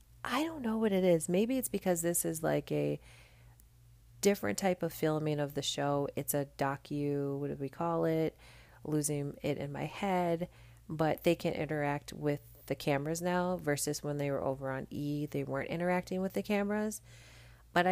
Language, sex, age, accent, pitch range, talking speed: English, female, 30-49, American, 120-165 Hz, 185 wpm